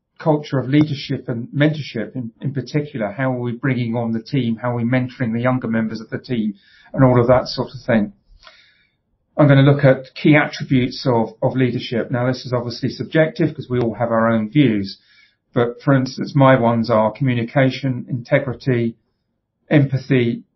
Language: English